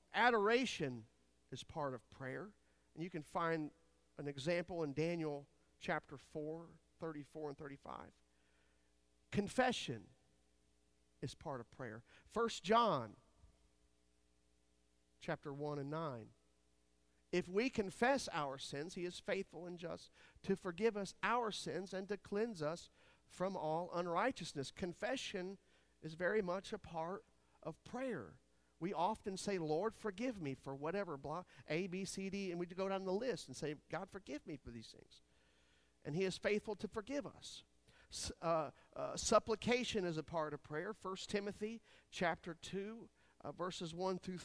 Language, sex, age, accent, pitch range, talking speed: English, male, 50-69, American, 140-200 Hz, 150 wpm